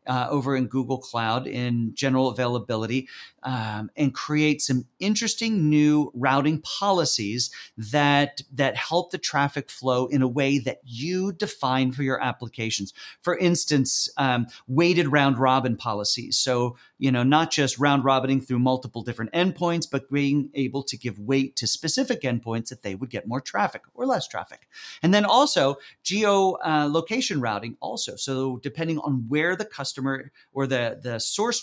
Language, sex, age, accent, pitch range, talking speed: English, male, 40-59, American, 115-150 Hz, 155 wpm